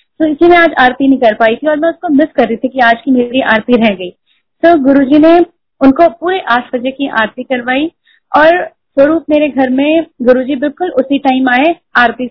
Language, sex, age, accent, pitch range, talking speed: Hindi, female, 30-49, native, 230-285 Hz, 215 wpm